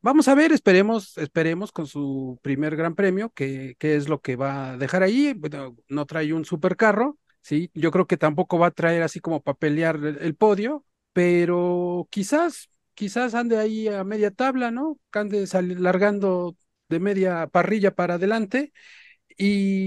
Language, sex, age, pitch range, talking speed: Spanish, male, 40-59, 155-205 Hz, 165 wpm